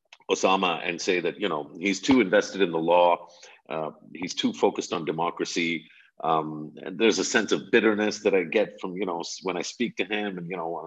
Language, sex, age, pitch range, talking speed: English, male, 50-69, 85-120 Hz, 220 wpm